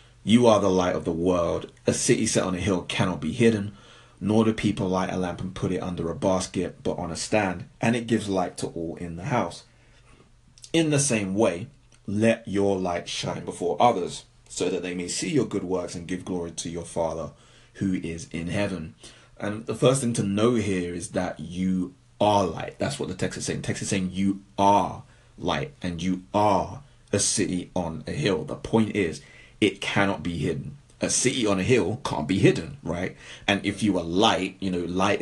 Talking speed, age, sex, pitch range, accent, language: 215 wpm, 30-49, male, 90-110 Hz, British, English